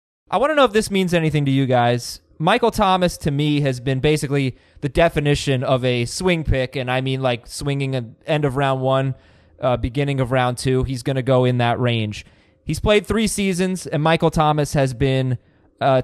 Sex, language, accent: male, English, American